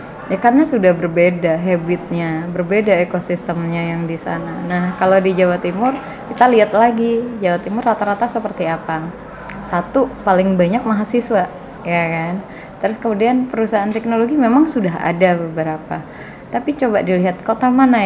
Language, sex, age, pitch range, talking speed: Indonesian, female, 20-39, 170-220 Hz, 140 wpm